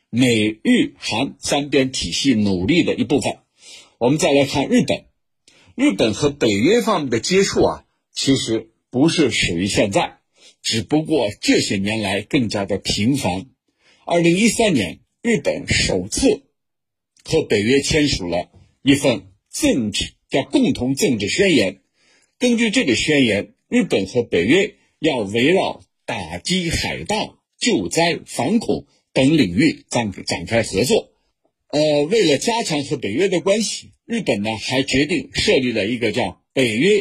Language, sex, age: Chinese, male, 50-69